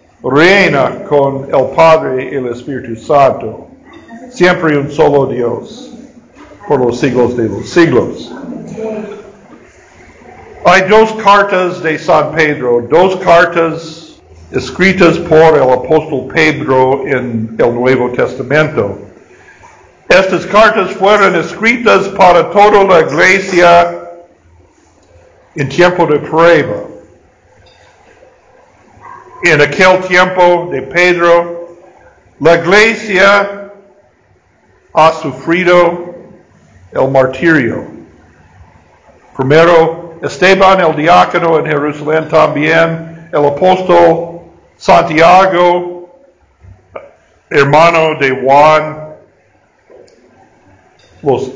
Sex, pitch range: male, 145-185 Hz